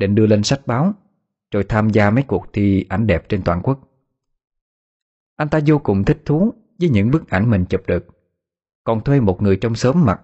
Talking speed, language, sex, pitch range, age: 210 wpm, Vietnamese, male, 95-135 Hz, 20-39